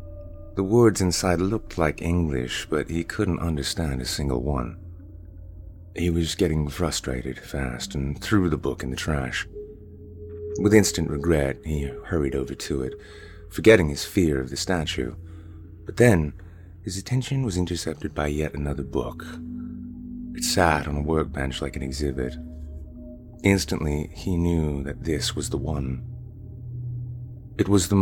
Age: 30-49